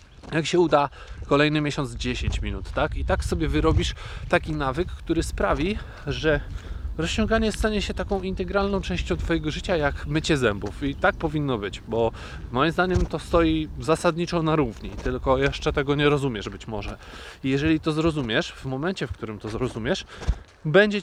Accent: native